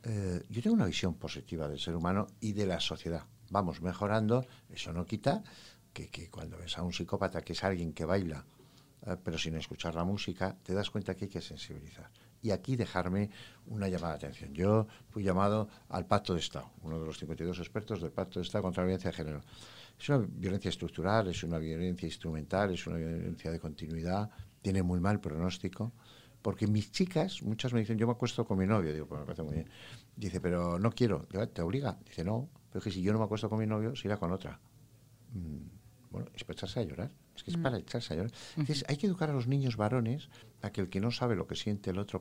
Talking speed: 230 wpm